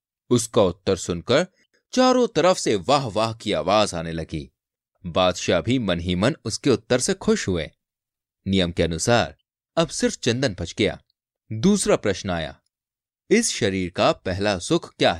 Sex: male